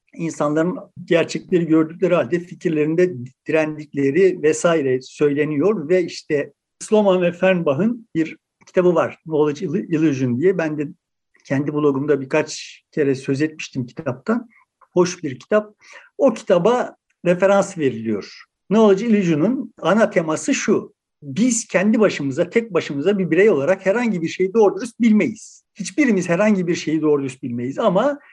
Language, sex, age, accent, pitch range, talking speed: Turkish, male, 60-79, native, 160-215 Hz, 130 wpm